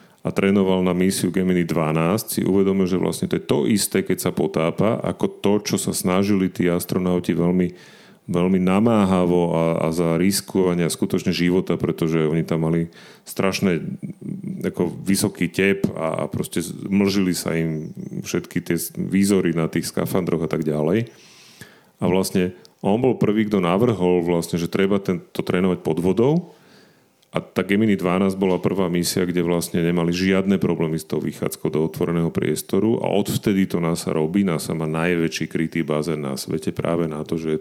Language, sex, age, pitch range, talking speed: Slovak, male, 40-59, 85-95 Hz, 170 wpm